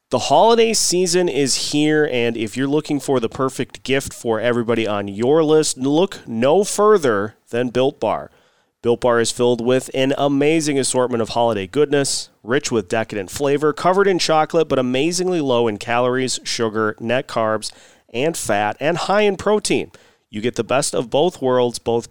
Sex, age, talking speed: male, 30-49, 175 wpm